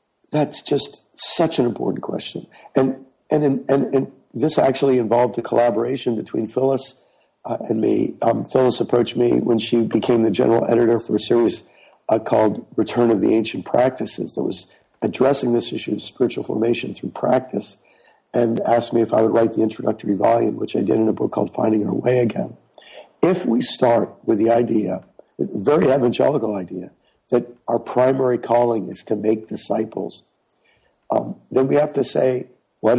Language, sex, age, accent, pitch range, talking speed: English, male, 50-69, American, 115-130 Hz, 175 wpm